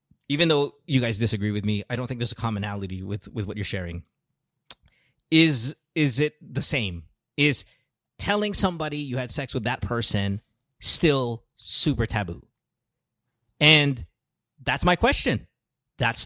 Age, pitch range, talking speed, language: 20-39, 125-170 Hz, 150 wpm, English